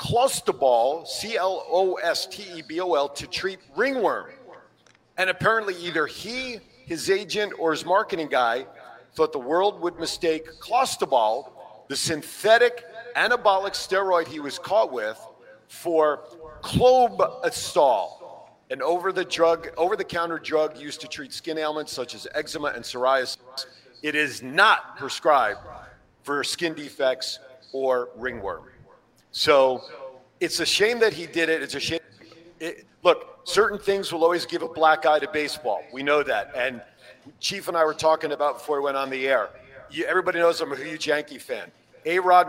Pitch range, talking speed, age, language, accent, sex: 150-180 Hz, 140 wpm, 40-59, English, American, male